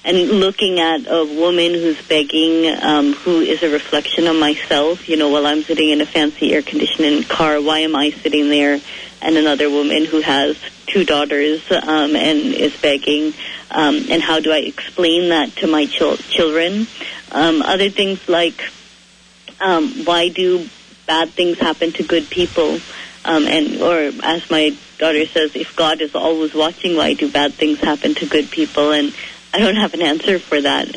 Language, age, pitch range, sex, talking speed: English, 30-49, 155-180 Hz, female, 175 wpm